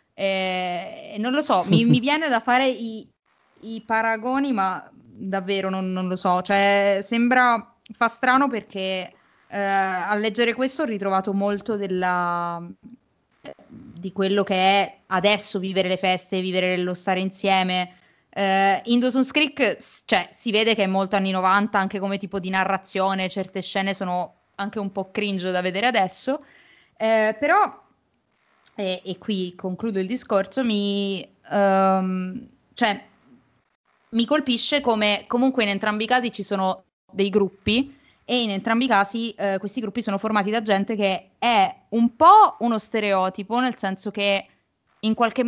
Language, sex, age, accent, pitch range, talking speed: Italian, female, 20-39, native, 190-230 Hz, 155 wpm